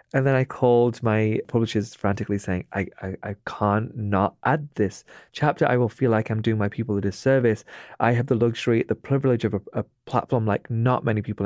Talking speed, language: 210 wpm, English